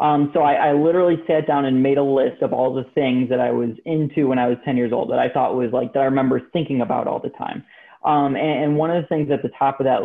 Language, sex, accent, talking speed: English, male, American, 300 wpm